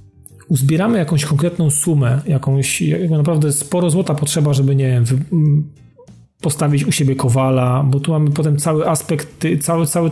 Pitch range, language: 135-155 Hz, Polish